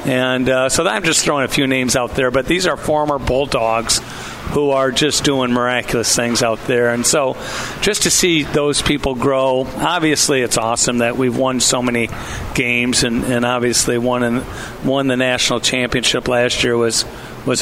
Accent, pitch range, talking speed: American, 120-135 Hz, 190 wpm